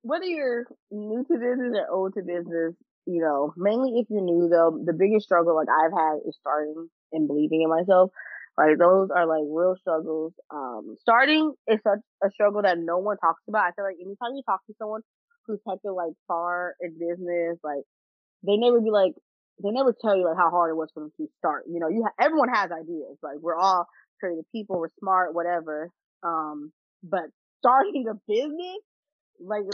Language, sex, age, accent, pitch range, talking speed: English, female, 20-39, American, 170-220 Hz, 200 wpm